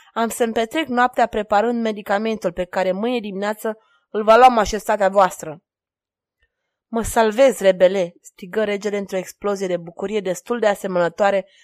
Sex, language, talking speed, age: female, Romanian, 135 wpm, 20-39